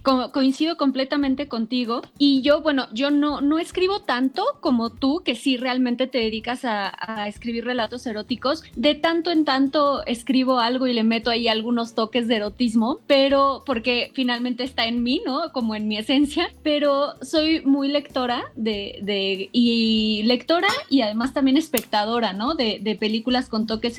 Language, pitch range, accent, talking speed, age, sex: Spanish, 235-285 Hz, Mexican, 170 wpm, 20-39, female